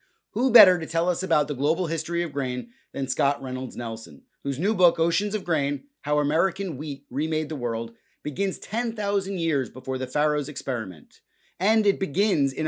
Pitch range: 135-180 Hz